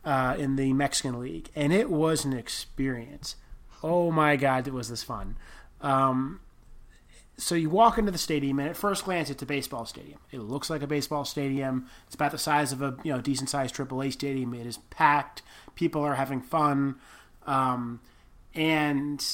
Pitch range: 135-175 Hz